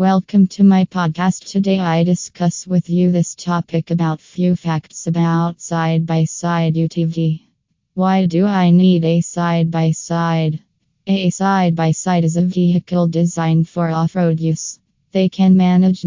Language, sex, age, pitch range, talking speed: English, female, 20-39, 165-180 Hz, 130 wpm